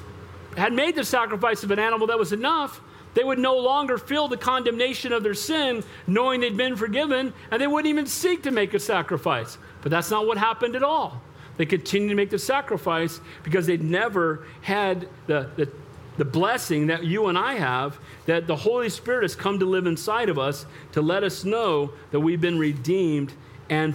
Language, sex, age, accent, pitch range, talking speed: English, male, 50-69, American, 165-245 Hz, 200 wpm